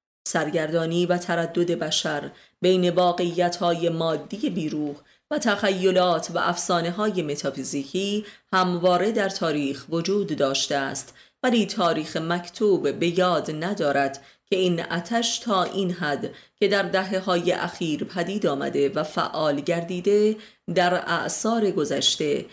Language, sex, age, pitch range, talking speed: Persian, female, 30-49, 165-200 Hz, 115 wpm